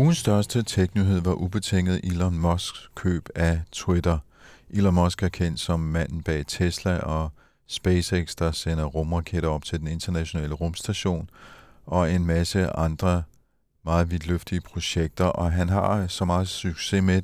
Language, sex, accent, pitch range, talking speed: Danish, male, native, 80-95 Hz, 145 wpm